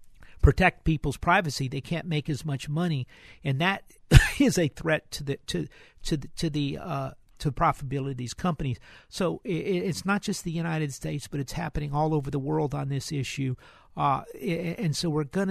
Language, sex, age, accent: English, male, 50-69, American